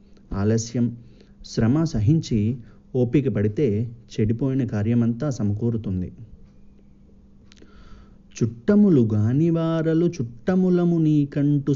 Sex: male